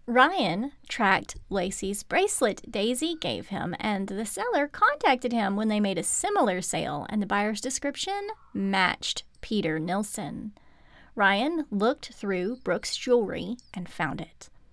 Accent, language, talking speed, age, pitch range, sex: American, English, 135 wpm, 30-49, 200-310 Hz, female